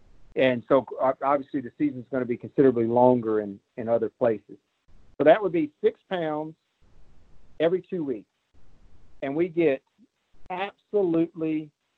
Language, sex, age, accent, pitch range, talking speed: English, male, 50-69, American, 115-160 Hz, 135 wpm